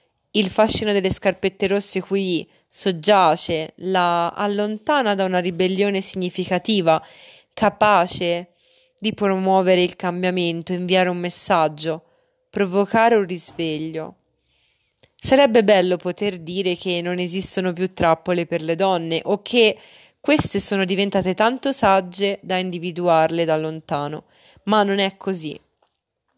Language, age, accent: Italian, 20-39, native